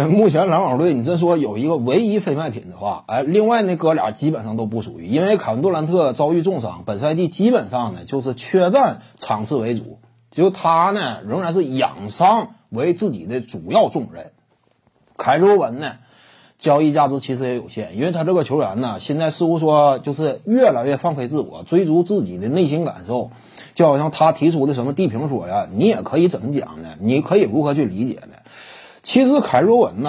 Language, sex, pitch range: Chinese, male, 130-190 Hz